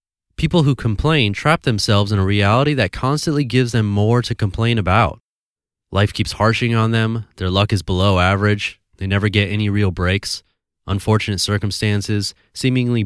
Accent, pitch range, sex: American, 95-120 Hz, male